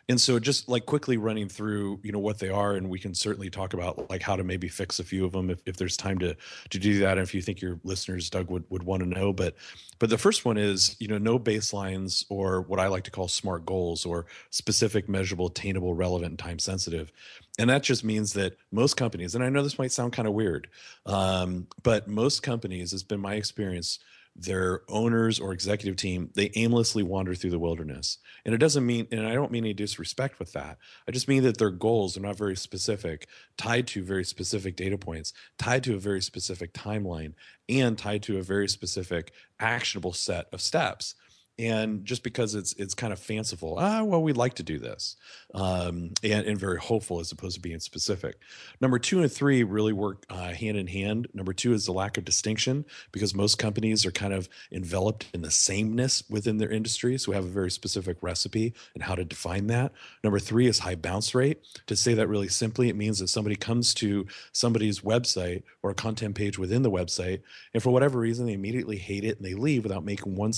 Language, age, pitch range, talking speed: English, 30-49, 95-115 Hz, 220 wpm